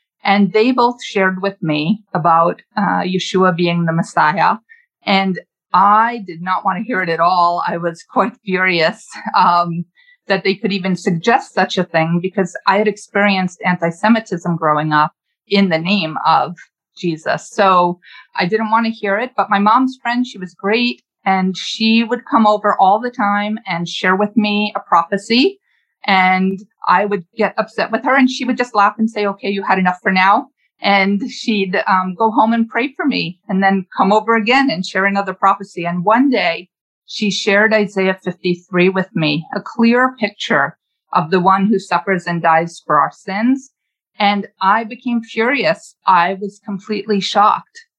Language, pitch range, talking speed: English, 185-225 Hz, 180 wpm